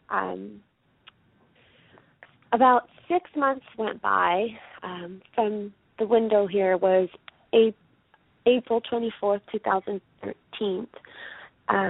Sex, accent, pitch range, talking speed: female, American, 185-220 Hz, 80 wpm